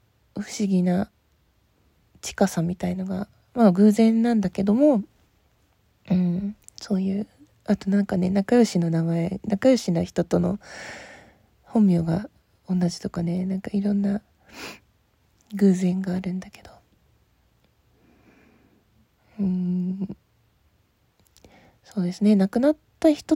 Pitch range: 180-210 Hz